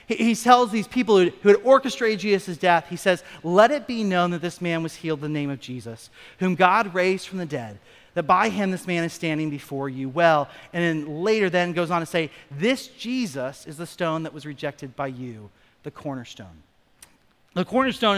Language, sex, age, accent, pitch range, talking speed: English, male, 40-59, American, 150-200 Hz, 210 wpm